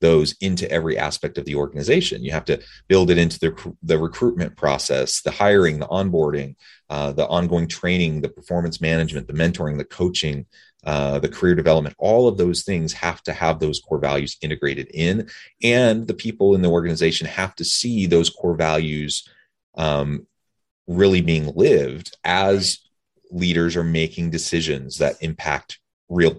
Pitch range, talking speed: 75-85 Hz, 165 wpm